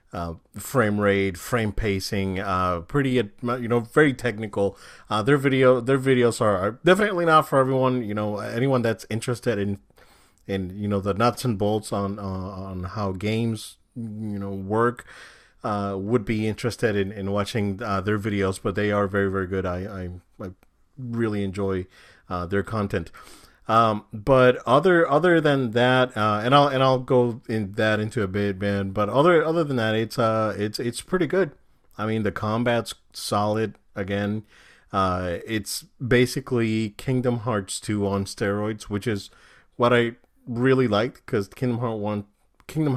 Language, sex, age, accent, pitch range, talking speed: English, male, 30-49, American, 100-120 Hz, 165 wpm